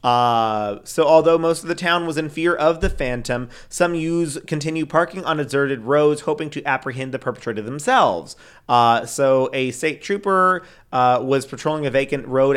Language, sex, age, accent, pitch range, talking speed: English, male, 40-59, American, 125-145 Hz, 175 wpm